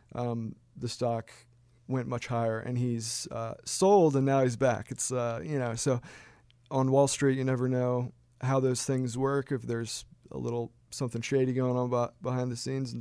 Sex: male